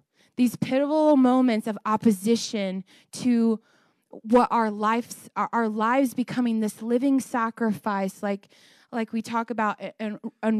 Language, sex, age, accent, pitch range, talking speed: English, female, 20-39, American, 215-255 Hz, 125 wpm